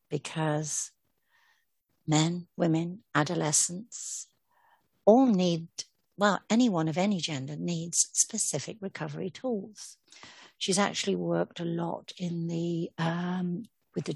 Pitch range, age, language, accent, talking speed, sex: 155-185 Hz, 60-79, English, British, 105 wpm, female